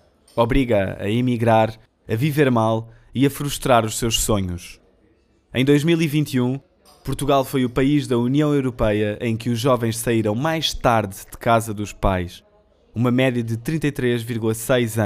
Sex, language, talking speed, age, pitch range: male, Portuguese, 145 wpm, 20-39, 105-135 Hz